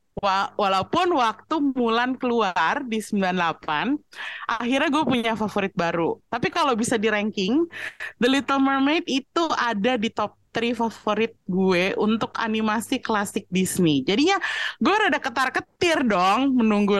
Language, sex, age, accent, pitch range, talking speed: Indonesian, female, 20-39, native, 185-275 Hz, 125 wpm